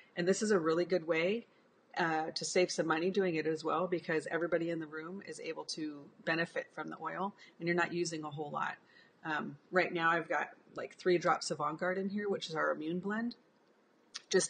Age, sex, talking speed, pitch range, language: 30-49, female, 220 wpm, 160-185 Hz, English